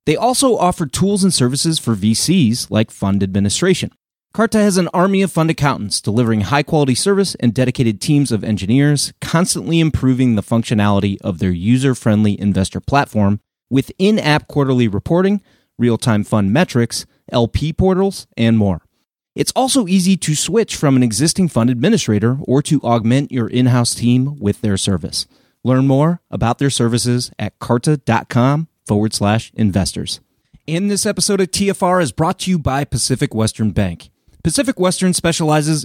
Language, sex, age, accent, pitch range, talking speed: English, male, 30-49, American, 110-160 Hz, 150 wpm